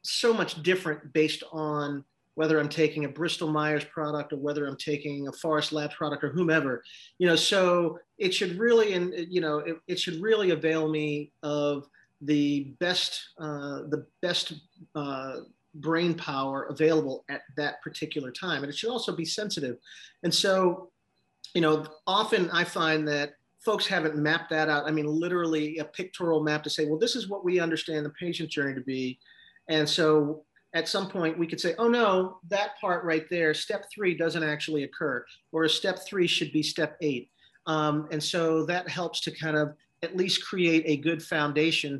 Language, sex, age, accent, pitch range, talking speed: English, male, 40-59, American, 150-175 Hz, 185 wpm